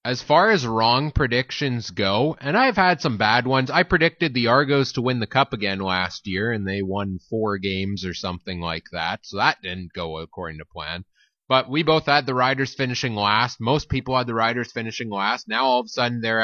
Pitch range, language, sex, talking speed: 110-140 Hz, English, male, 220 wpm